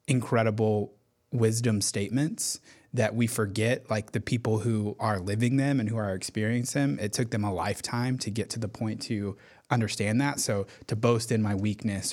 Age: 20-39